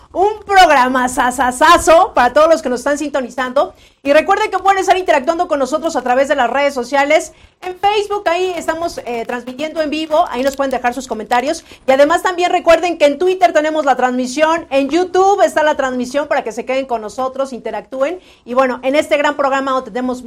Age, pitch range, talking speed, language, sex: 40-59, 250-320 Hz, 200 wpm, Spanish, female